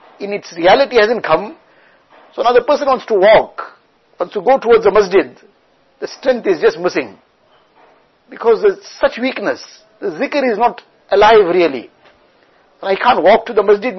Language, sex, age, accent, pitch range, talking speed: English, male, 60-79, Indian, 205-280 Hz, 180 wpm